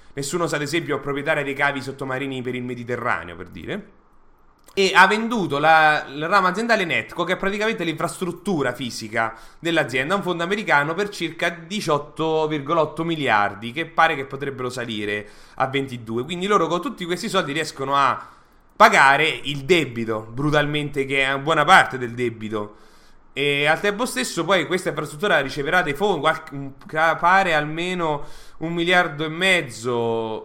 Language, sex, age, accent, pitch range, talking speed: English, male, 30-49, Italian, 125-165 Hz, 155 wpm